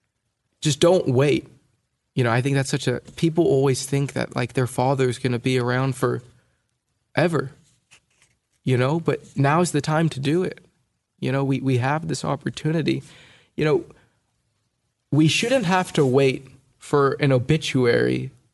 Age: 20-39